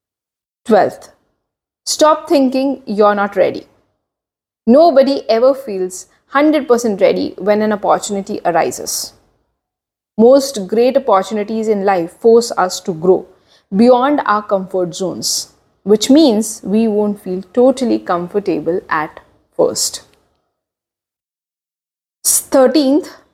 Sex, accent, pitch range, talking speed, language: female, Indian, 190-260 Hz, 100 wpm, English